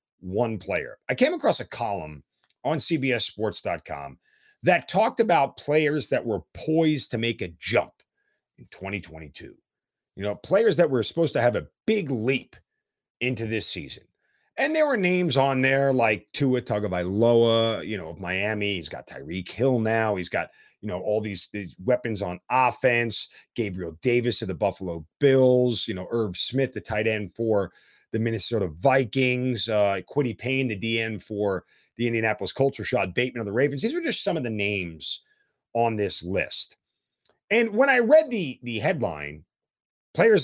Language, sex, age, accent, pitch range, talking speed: English, male, 40-59, American, 100-135 Hz, 165 wpm